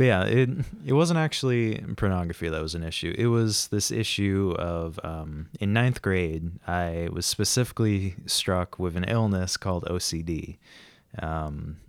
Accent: American